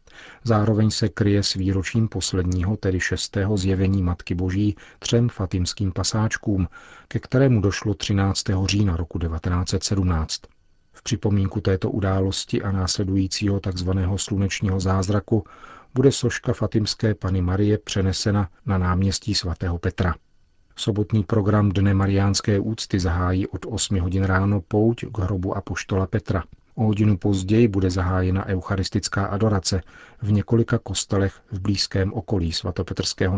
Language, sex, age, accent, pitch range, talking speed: Czech, male, 40-59, native, 95-110 Hz, 120 wpm